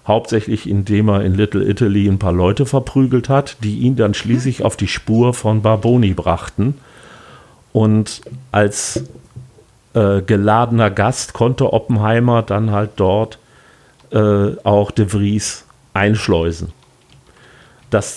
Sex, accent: male, German